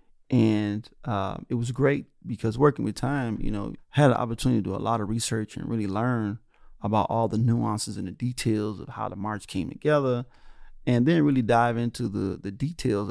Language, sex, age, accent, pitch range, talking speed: English, male, 30-49, American, 105-125 Hz, 200 wpm